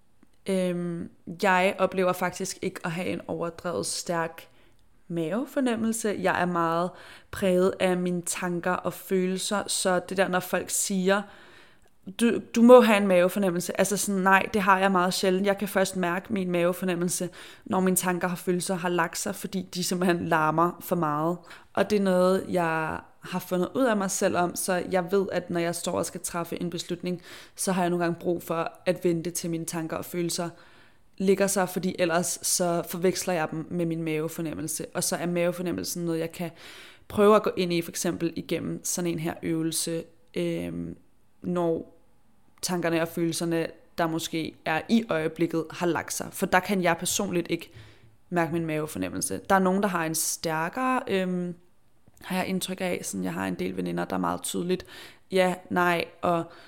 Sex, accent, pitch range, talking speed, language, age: female, native, 170-185 Hz, 185 wpm, Danish, 20-39